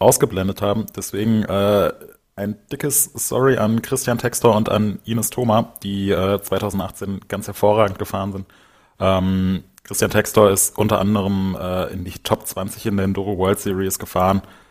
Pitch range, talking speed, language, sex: 95-105 Hz, 155 wpm, German, male